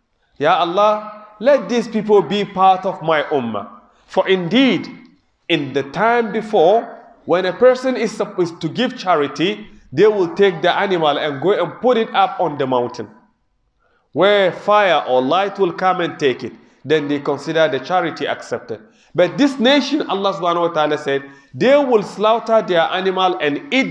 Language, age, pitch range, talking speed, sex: English, 30-49, 140-210 Hz, 165 wpm, male